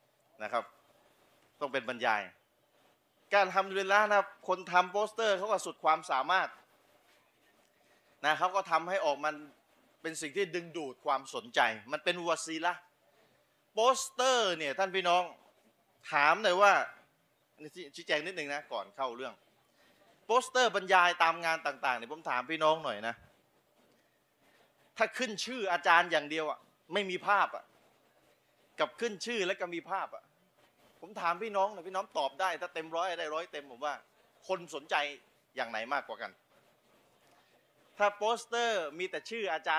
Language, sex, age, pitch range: Thai, male, 30-49, 155-210 Hz